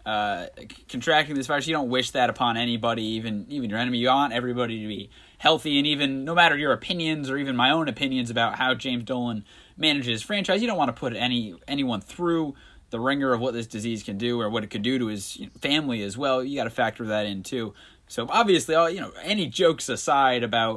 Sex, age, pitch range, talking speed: male, 20-39, 110-145 Hz, 240 wpm